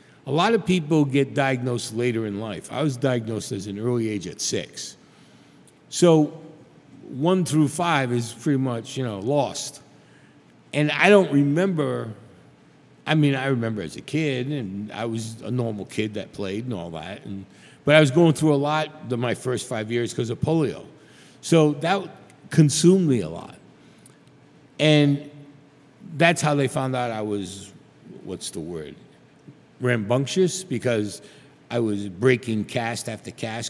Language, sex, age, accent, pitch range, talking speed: English, male, 50-69, American, 110-150 Hz, 160 wpm